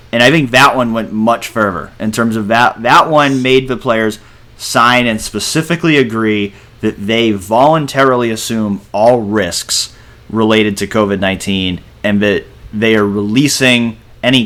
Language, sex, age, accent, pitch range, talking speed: English, male, 30-49, American, 100-125 Hz, 155 wpm